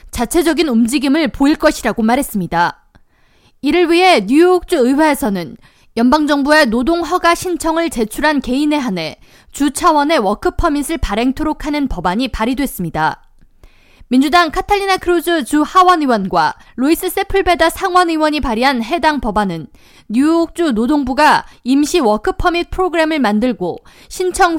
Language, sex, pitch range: Korean, female, 240-335 Hz